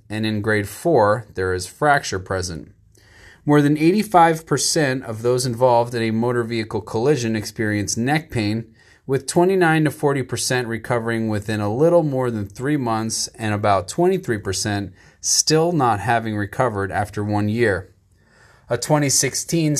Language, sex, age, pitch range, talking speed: English, male, 30-49, 105-140 Hz, 140 wpm